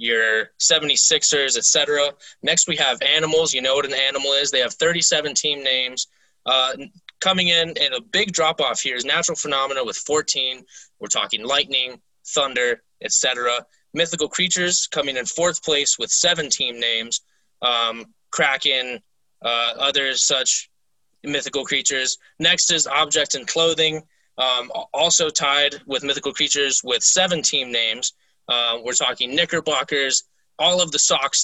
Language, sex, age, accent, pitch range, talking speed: English, male, 20-39, American, 130-160 Hz, 145 wpm